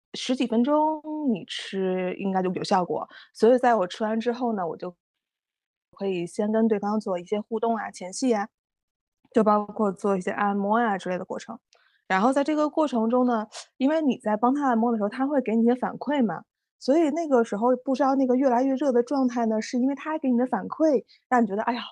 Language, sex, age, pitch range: Chinese, female, 20-39, 205-260 Hz